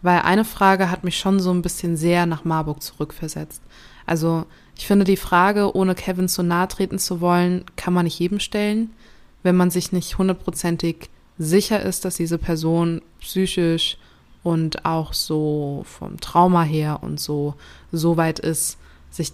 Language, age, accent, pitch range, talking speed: German, 20-39, German, 160-190 Hz, 165 wpm